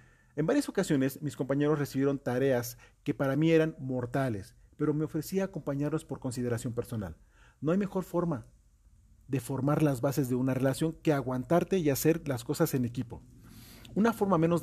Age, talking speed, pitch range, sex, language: 40-59, 170 wpm, 125-155 Hz, male, Spanish